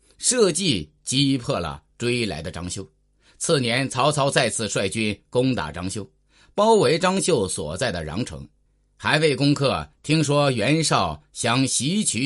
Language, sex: Chinese, male